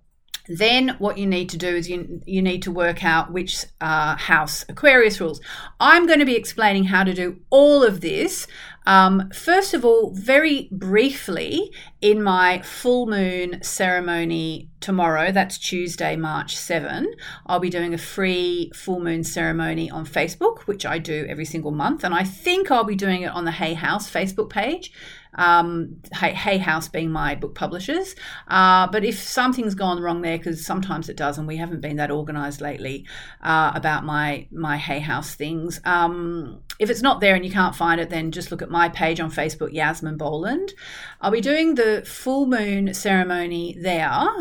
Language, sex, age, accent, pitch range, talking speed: English, female, 40-59, Australian, 165-210 Hz, 180 wpm